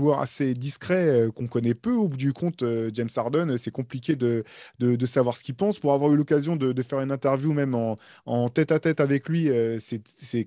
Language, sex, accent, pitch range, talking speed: French, male, French, 120-145 Hz, 225 wpm